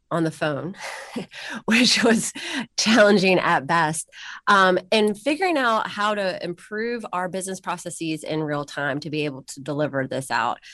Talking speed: 155 wpm